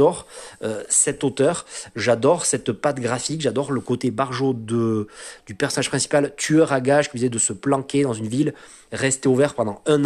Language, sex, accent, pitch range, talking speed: French, male, French, 120-150 Hz, 180 wpm